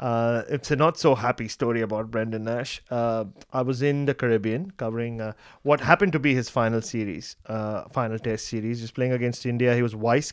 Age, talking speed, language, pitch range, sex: 30-49, 215 wpm, English, 115-140 Hz, male